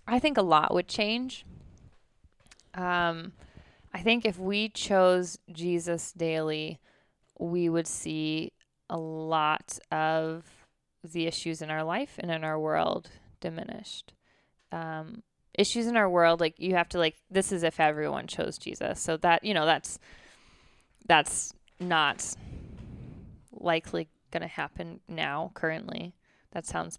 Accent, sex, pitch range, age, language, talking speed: American, female, 165-205 Hz, 20-39, English, 135 wpm